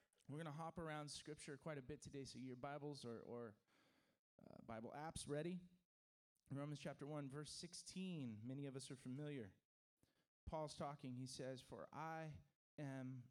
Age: 30-49